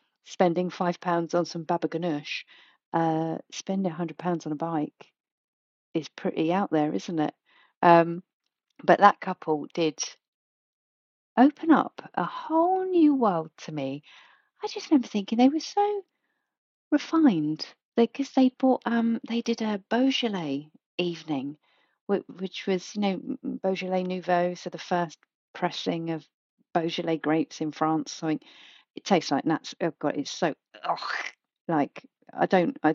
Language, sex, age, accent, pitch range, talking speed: English, female, 40-59, British, 155-235 Hz, 145 wpm